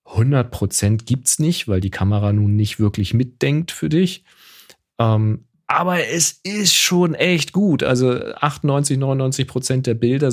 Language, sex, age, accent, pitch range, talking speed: German, male, 40-59, German, 100-140 Hz, 145 wpm